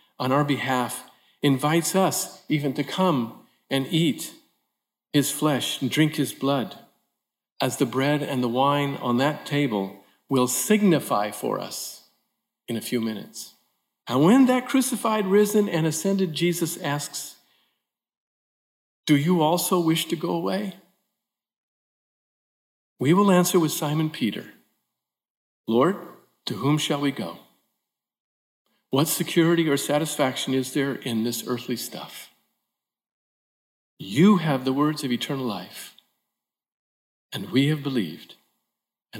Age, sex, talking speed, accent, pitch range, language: 50-69, male, 125 wpm, American, 125-165 Hz, English